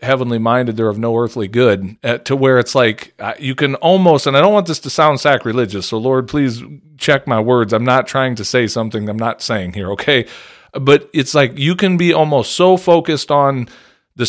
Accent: American